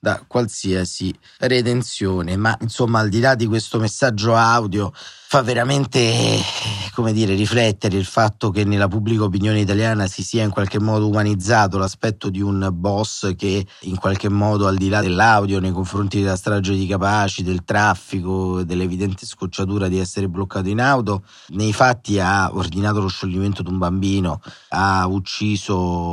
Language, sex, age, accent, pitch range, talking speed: Italian, male, 30-49, native, 95-115 Hz, 160 wpm